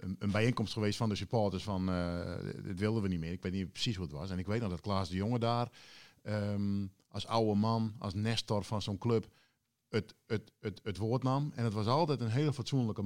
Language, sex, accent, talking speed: Dutch, male, Dutch, 225 wpm